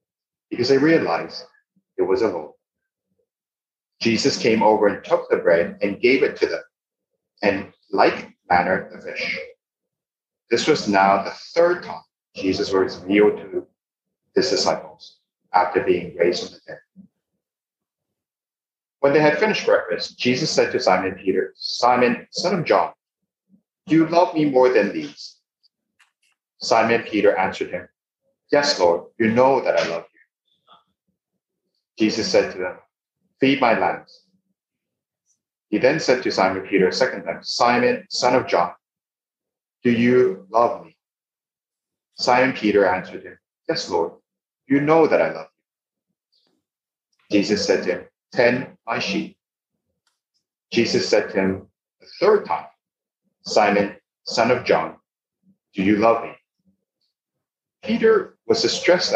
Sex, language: male, English